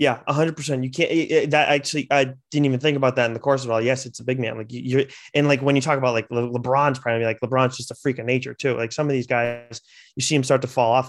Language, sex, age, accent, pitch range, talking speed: English, male, 20-39, American, 130-155 Hz, 305 wpm